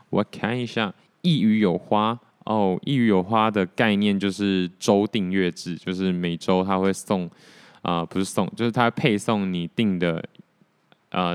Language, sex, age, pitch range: Chinese, male, 20-39, 90-105 Hz